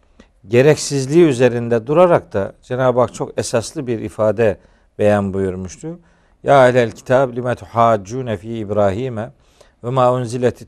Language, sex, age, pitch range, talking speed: Turkish, male, 50-69, 105-135 Hz, 120 wpm